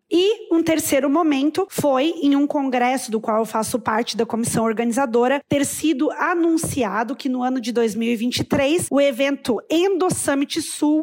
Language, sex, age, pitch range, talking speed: Portuguese, female, 20-39, 245-295 Hz, 150 wpm